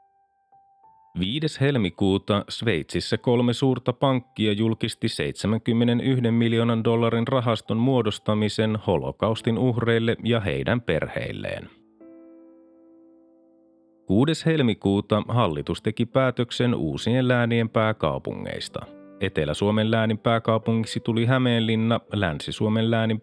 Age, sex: 30-49, male